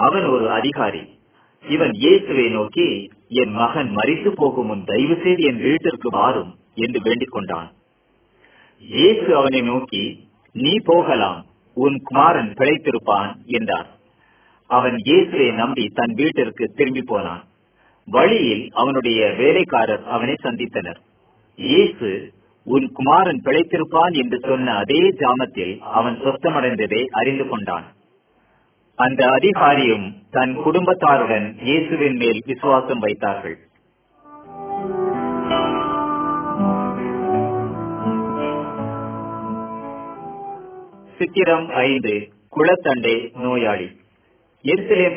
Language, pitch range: Hindi, 115-180 Hz